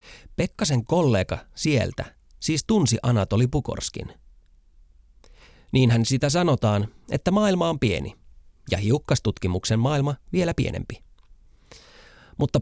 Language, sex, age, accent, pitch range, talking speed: Finnish, male, 30-49, native, 95-145 Hz, 95 wpm